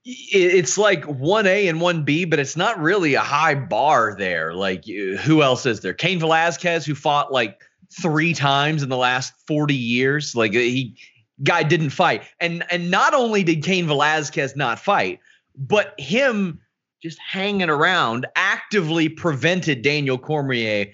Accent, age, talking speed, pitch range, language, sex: American, 30-49, 160 wpm, 125-170 Hz, English, male